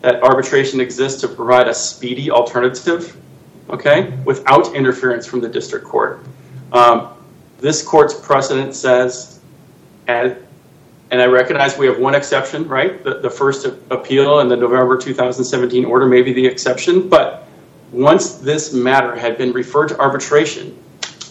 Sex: male